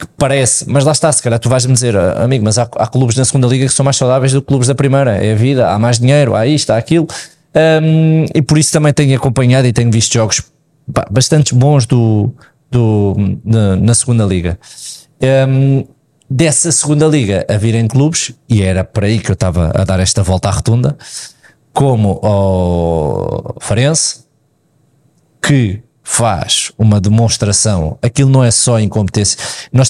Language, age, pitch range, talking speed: Portuguese, 20-39, 105-145 Hz, 175 wpm